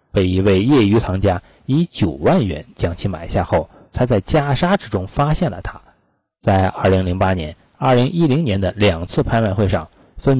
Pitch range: 95-135 Hz